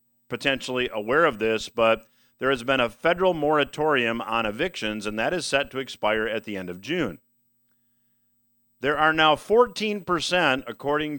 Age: 50-69